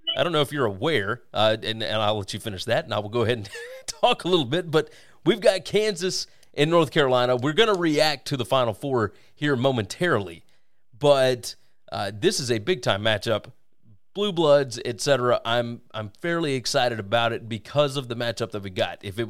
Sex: male